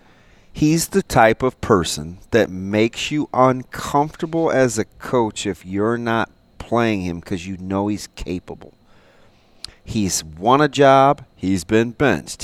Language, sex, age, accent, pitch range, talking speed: English, male, 40-59, American, 105-135 Hz, 140 wpm